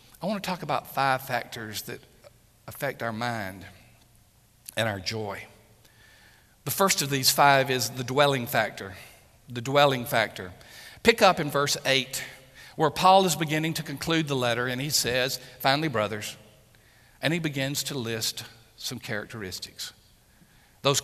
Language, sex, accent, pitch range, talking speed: English, male, American, 115-140 Hz, 150 wpm